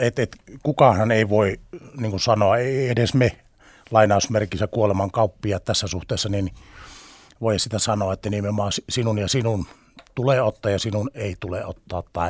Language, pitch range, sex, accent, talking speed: Finnish, 100-125 Hz, male, native, 135 wpm